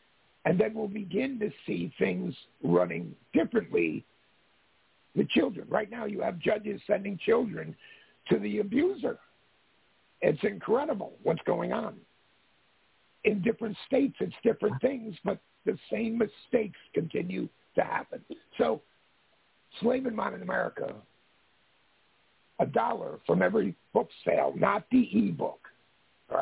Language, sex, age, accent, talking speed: English, male, 60-79, American, 125 wpm